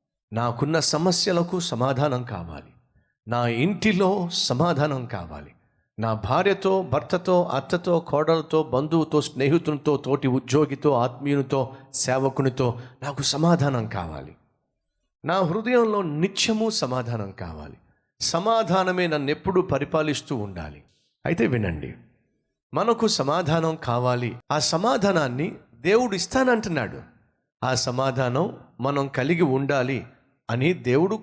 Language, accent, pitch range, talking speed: Telugu, native, 120-180 Hz, 90 wpm